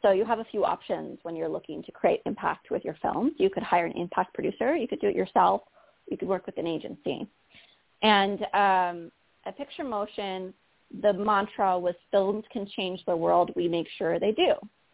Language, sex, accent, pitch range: English, female, American, 180-230 Hz